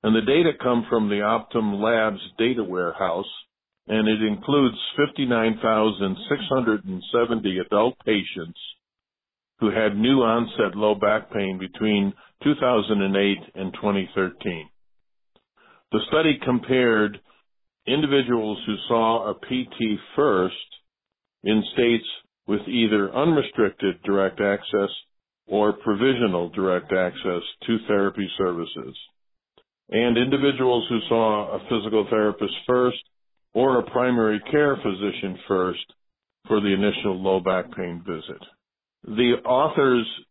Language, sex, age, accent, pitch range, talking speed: English, male, 50-69, American, 100-120 Hz, 110 wpm